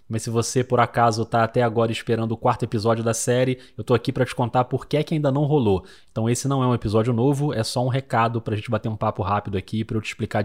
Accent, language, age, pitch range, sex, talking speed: Brazilian, Portuguese, 20-39, 110-145 Hz, male, 285 wpm